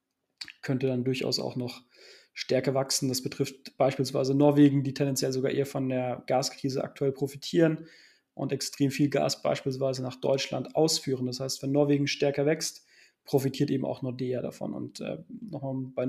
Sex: male